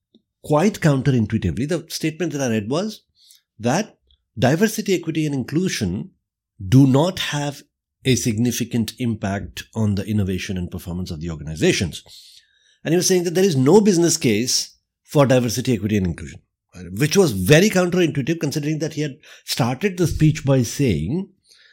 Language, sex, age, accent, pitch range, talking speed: English, male, 50-69, Indian, 100-150 Hz, 150 wpm